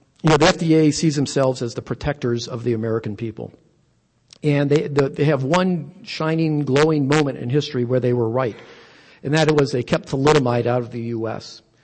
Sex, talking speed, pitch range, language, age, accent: male, 200 wpm, 120-145 Hz, English, 50-69, American